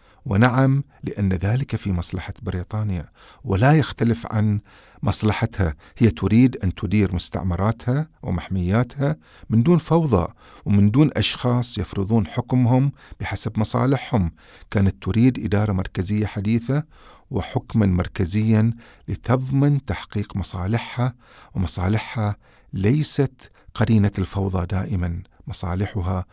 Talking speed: 95 wpm